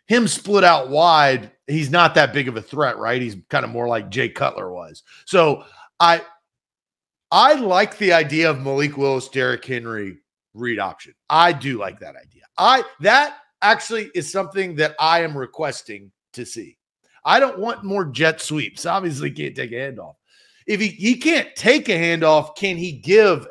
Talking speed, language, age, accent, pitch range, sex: 180 wpm, English, 40-59, American, 140-195 Hz, male